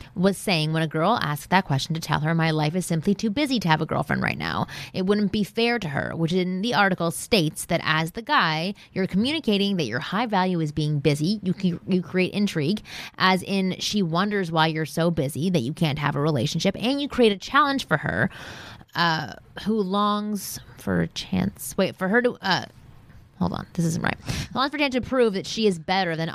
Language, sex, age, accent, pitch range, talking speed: English, female, 20-39, American, 160-210 Hz, 225 wpm